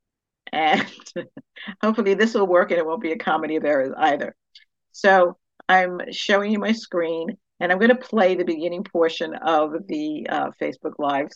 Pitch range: 160-215 Hz